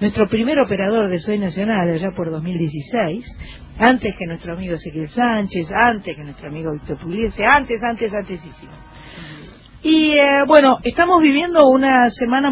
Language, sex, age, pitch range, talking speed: Spanish, female, 40-59, 175-245 Hz, 150 wpm